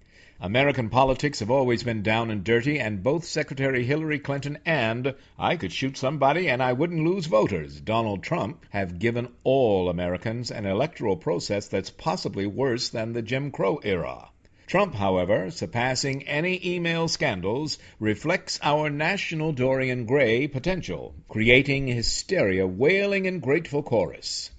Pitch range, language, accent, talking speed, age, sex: 115-150 Hz, English, American, 140 wpm, 60-79, male